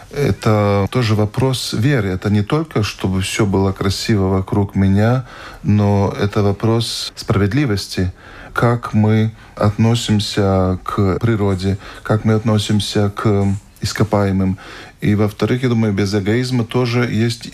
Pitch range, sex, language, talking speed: 100-115 Hz, male, Russian, 120 wpm